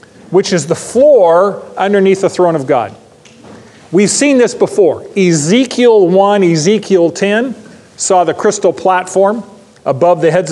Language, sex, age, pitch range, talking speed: English, male, 40-59, 160-205 Hz, 135 wpm